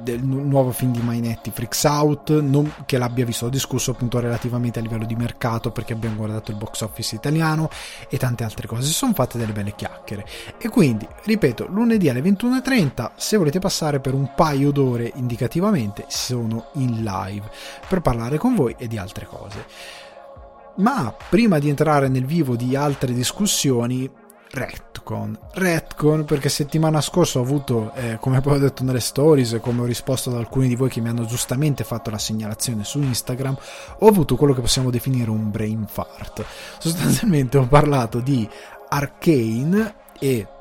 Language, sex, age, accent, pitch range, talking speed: Italian, male, 20-39, native, 115-145 Hz, 170 wpm